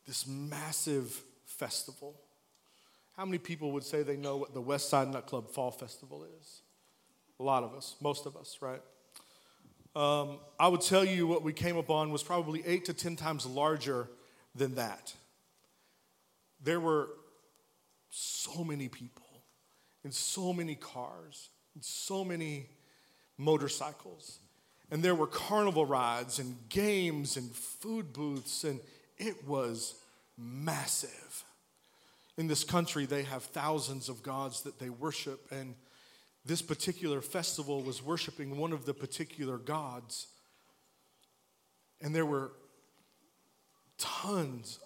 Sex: male